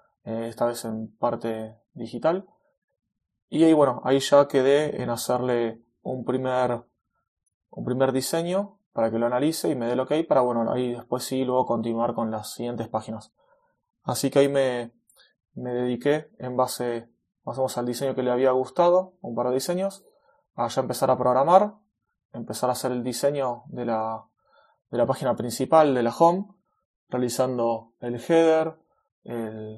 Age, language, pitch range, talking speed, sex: 20-39, Spanish, 120-150 Hz, 160 wpm, male